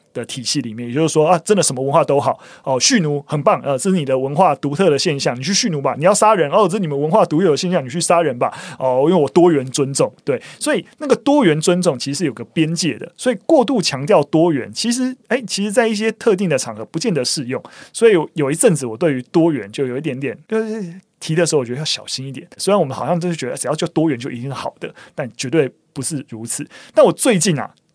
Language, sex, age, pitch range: Chinese, male, 20-39, 135-195 Hz